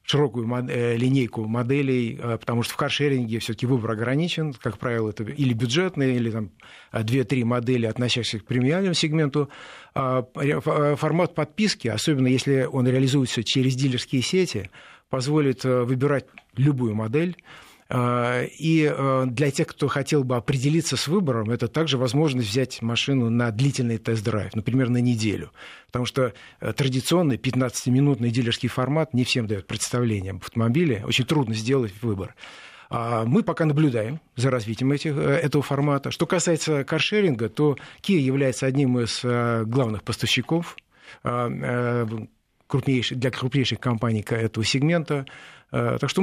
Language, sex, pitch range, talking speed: Russian, male, 120-145 Hz, 125 wpm